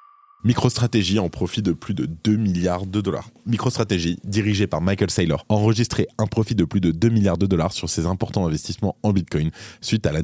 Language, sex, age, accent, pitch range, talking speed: French, male, 20-39, French, 90-110 Hz, 200 wpm